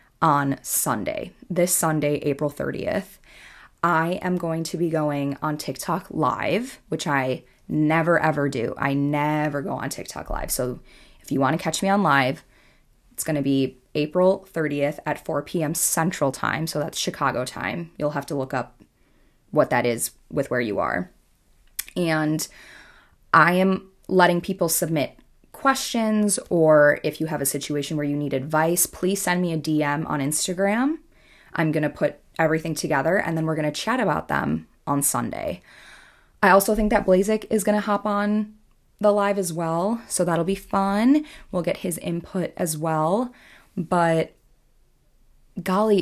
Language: English